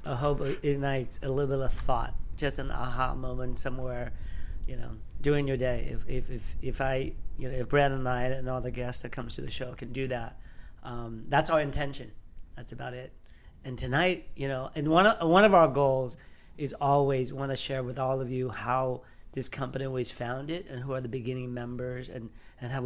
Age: 40-59